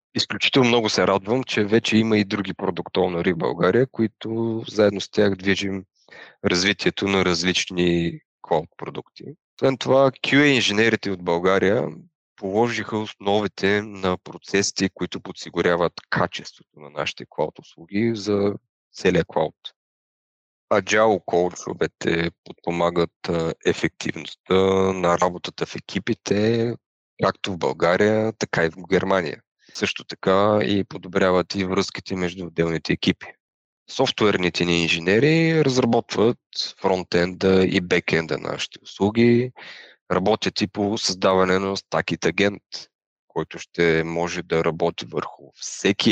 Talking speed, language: 110 wpm, Bulgarian